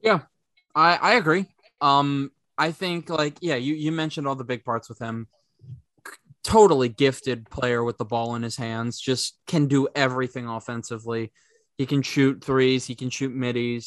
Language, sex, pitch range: English, male, 120-140 Hz